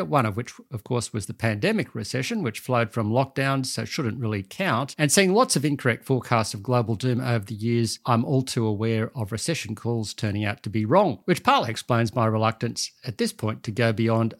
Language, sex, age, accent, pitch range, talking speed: English, male, 50-69, Australian, 110-135 Hz, 215 wpm